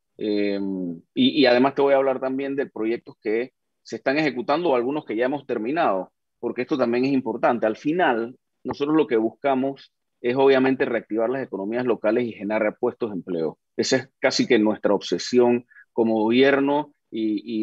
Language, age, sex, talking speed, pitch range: Spanish, 30-49, male, 180 wpm, 110-135 Hz